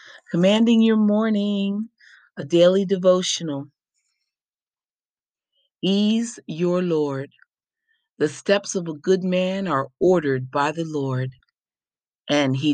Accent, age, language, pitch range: American, 40-59, English, 140-190 Hz